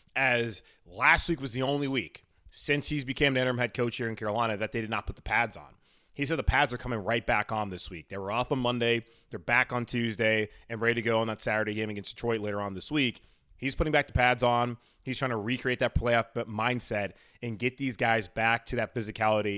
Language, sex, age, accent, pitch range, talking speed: English, male, 20-39, American, 105-120 Hz, 245 wpm